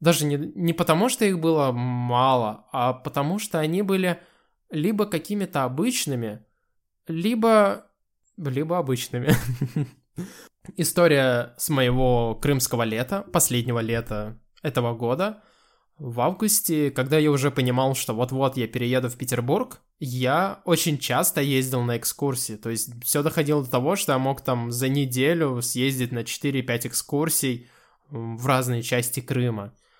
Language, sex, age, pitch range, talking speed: Russian, male, 20-39, 125-170 Hz, 130 wpm